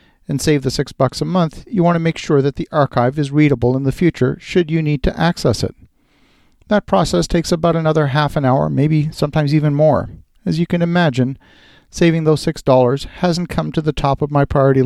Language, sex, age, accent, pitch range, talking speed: English, male, 50-69, American, 130-160 Hz, 220 wpm